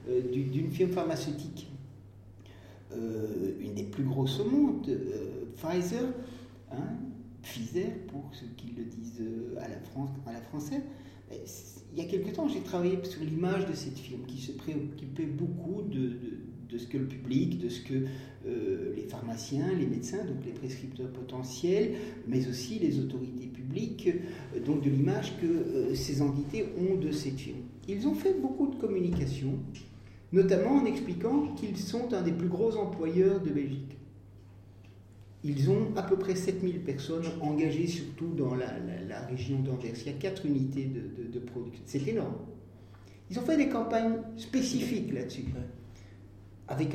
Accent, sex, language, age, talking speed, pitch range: French, male, French, 50-69, 160 wpm, 125-185 Hz